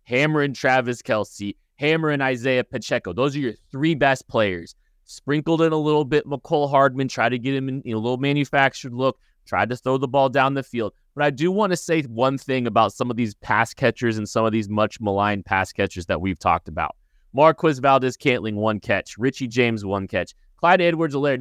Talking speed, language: 200 wpm, English